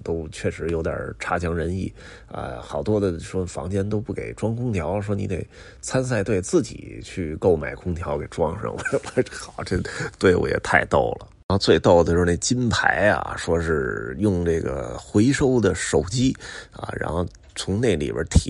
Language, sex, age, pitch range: Chinese, male, 30-49, 85-105 Hz